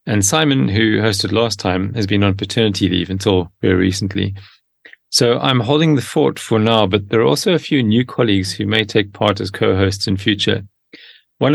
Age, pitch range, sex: 30-49, 95-115 Hz, male